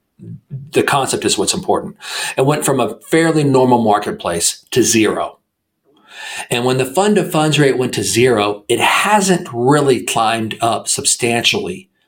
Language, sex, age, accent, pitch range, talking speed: English, male, 40-59, American, 120-150 Hz, 150 wpm